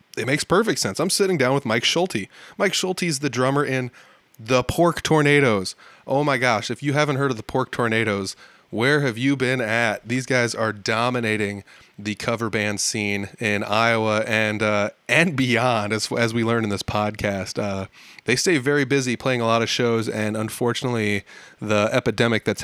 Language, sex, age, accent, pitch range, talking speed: English, male, 20-39, American, 105-130 Hz, 185 wpm